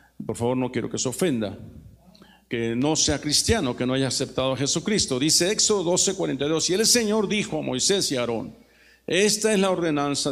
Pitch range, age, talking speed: 105-160 Hz, 50-69, 190 wpm